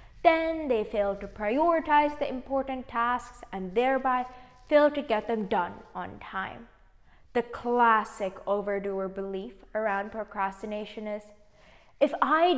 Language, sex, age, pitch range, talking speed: English, female, 20-39, 205-270 Hz, 125 wpm